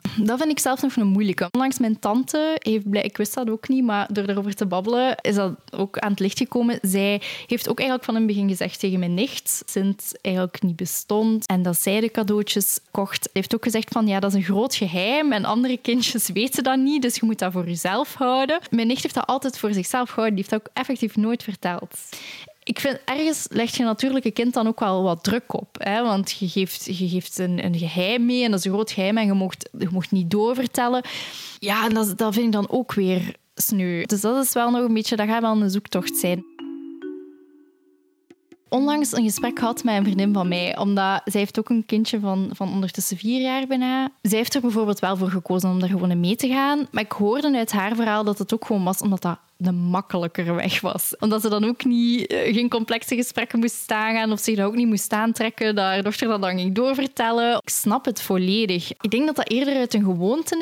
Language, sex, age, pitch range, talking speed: Dutch, female, 10-29, 195-245 Hz, 235 wpm